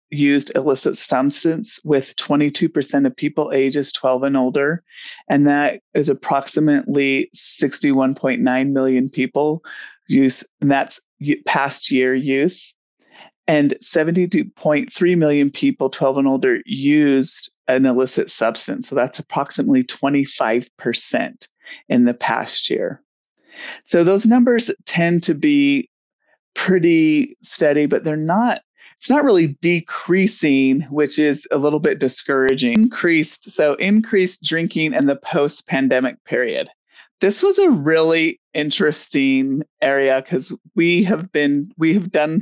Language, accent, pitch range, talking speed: English, American, 140-185 Hz, 120 wpm